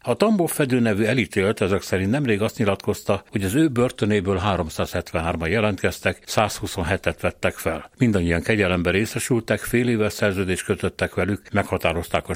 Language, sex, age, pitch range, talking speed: Hungarian, male, 60-79, 90-110 Hz, 140 wpm